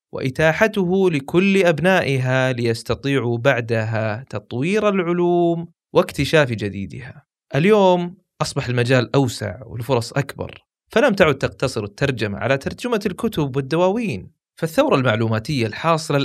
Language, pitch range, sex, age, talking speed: Arabic, 120-180 Hz, male, 20-39, 95 wpm